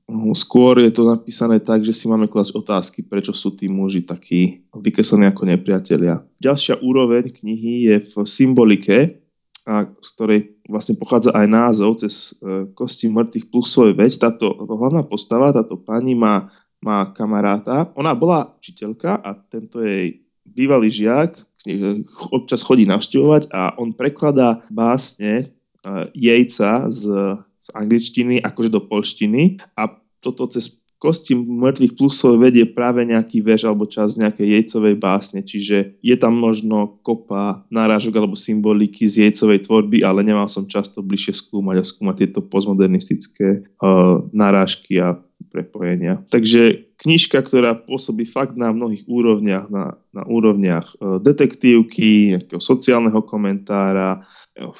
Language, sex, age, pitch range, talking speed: Slovak, male, 20-39, 100-120 Hz, 135 wpm